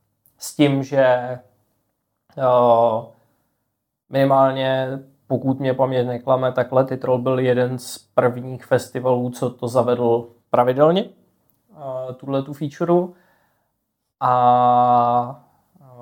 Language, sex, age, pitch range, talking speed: Czech, male, 20-39, 125-130 Hz, 85 wpm